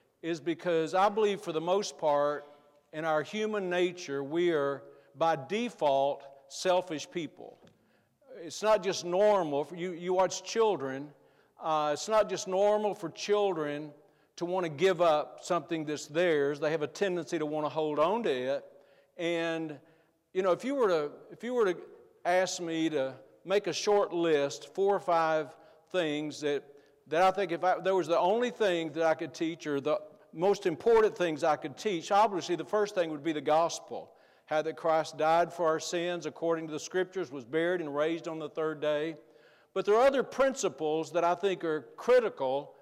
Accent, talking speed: American, 190 wpm